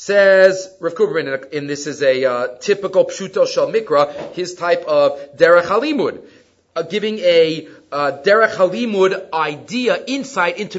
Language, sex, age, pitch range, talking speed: English, male, 40-59, 180-275 Hz, 140 wpm